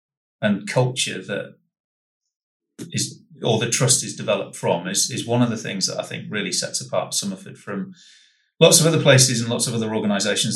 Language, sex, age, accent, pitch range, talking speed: English, male, 30-49, British, 110-165 Hz, 190 wpm